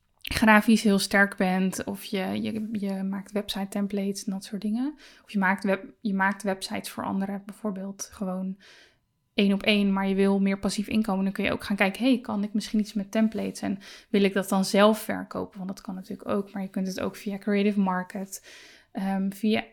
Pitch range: 195-215 Hz